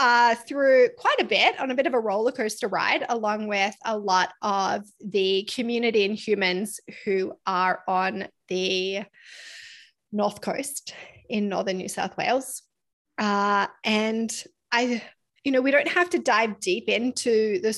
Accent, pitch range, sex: Australian, 200-245 Hz, female